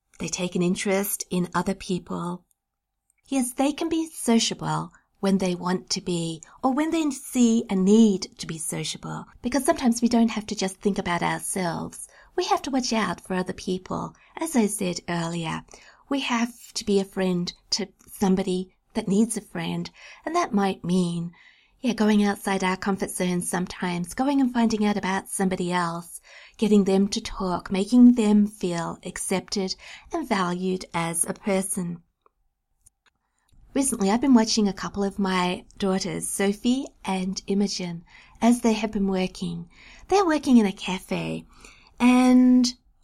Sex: female